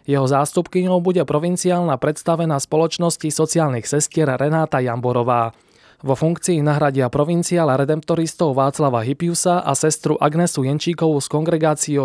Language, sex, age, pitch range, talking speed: Slovak, male, 20-39, 130-165 Hz, 115 wpm